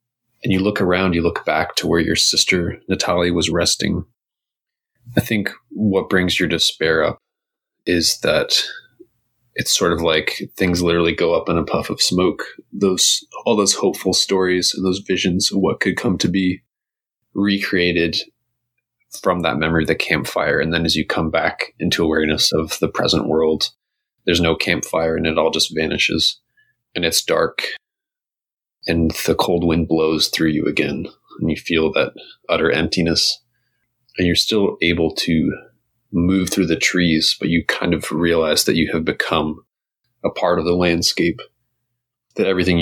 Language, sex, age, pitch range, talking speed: English, male, 20-39, 85-120 Hz, 165 wpm